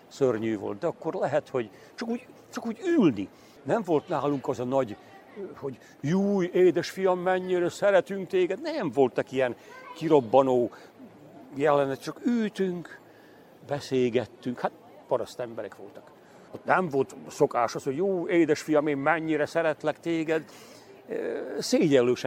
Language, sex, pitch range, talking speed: Hungarian, male, 125-180 Hz, 125 wpm